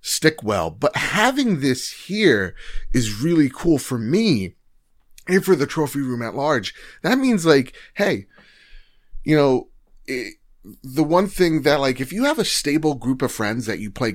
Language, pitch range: English, 110-145 Hz